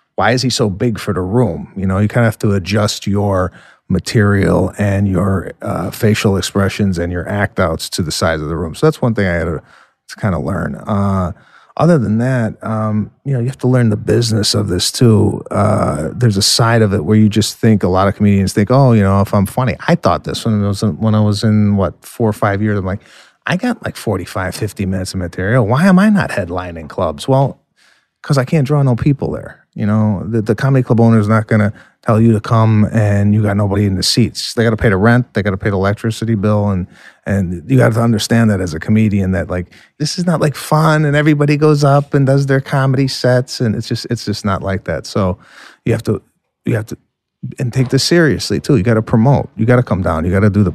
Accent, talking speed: American, 255 wpm